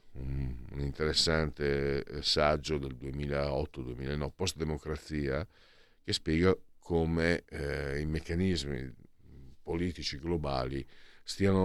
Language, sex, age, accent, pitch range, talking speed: Italian, male, 50-69, native, 75-95 Hz, 75 wpm